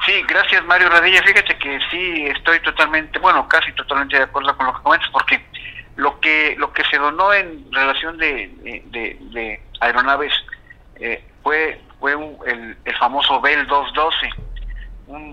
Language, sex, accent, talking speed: Spanish, male, Mexican, 160 wpm